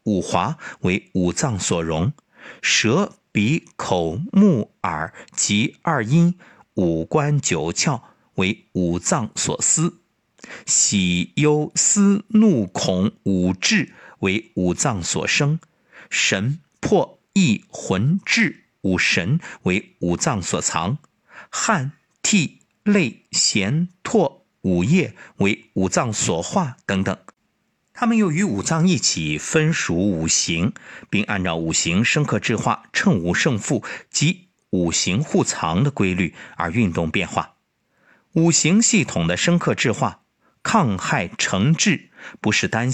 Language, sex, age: Chinese, male, 50-69